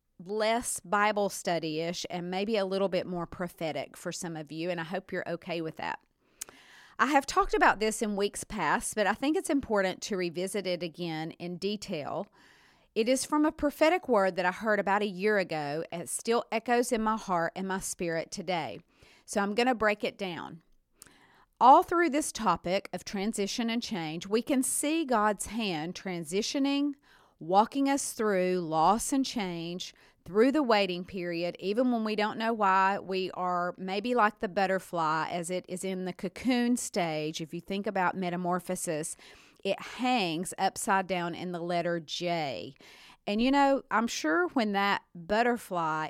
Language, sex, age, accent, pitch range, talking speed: English, female, 40-59, American, 175-225 Hz, 175 wpm